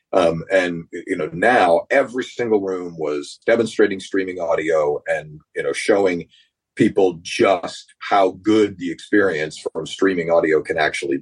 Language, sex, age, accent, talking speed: English, male, 40-59, American, 145 wpm